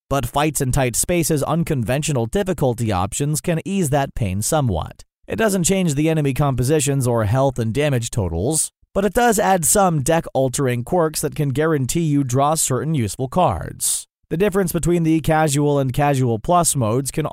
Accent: American